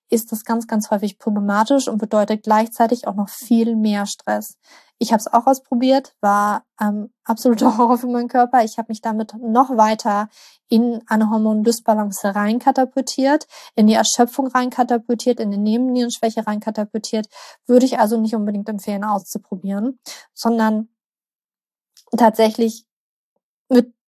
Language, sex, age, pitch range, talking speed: German, female, 20-39, 210-240 Hz, 135 wpm